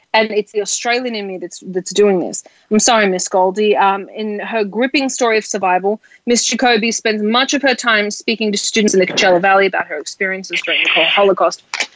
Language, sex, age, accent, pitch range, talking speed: English, female, 30-49, Australian, 200-240 Hz, 205 wpm